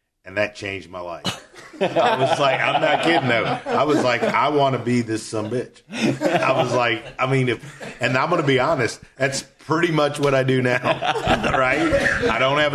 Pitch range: 95-120 Hz